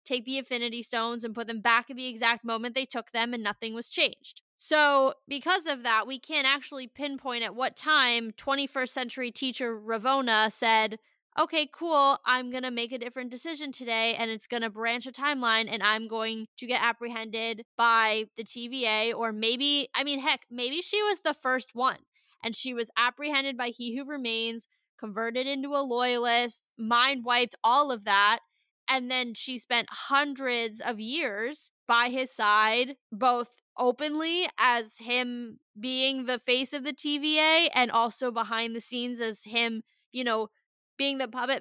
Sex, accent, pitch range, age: female, American, 230-270 Hz, 10-29